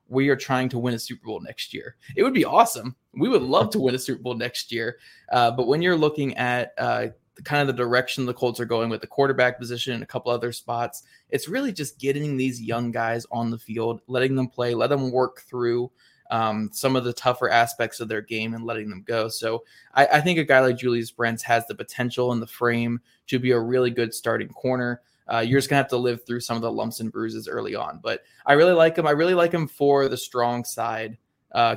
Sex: male